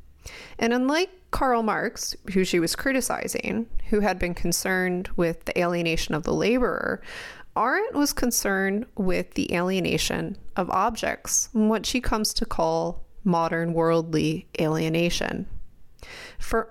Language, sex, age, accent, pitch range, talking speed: English, female, 30-49, American, 175-230 Hz, 125 wpm